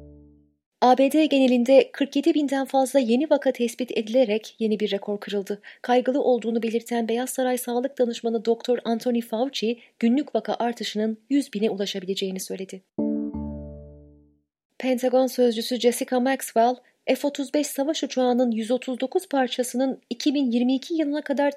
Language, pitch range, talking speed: Turkish, 220-275 Hz, 115 wpm